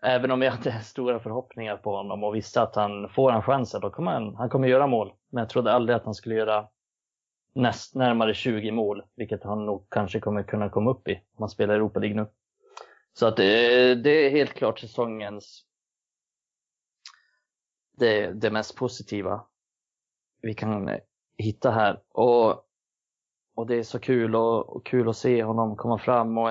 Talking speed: 180 wpm